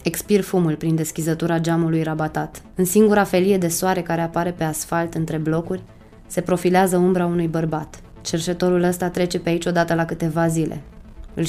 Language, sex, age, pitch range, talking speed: Romanian, female, 20-39, 160-180 Hz, 165 wpm